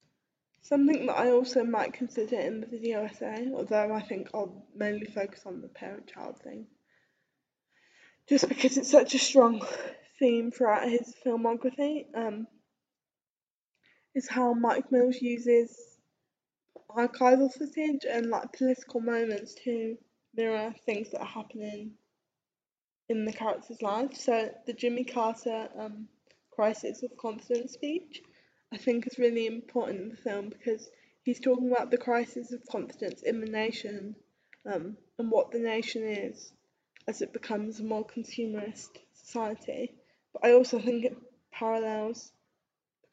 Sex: female